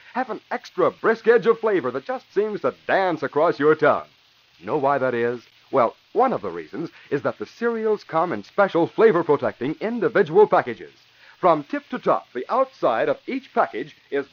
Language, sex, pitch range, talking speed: English, male, 165-265 Hz, 185 wpm